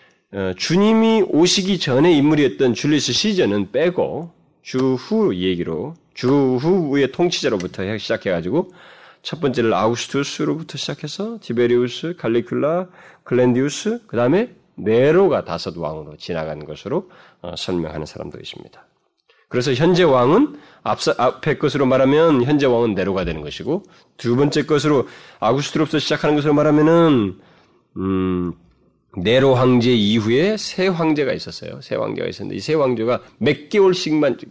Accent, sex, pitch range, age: native, male, 100-160 Hz, 30-49